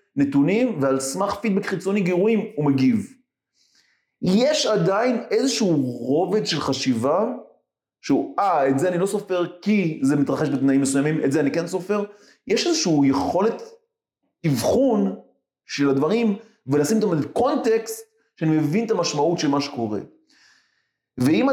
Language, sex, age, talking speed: Hebrew, male, 30-49, 135 wpm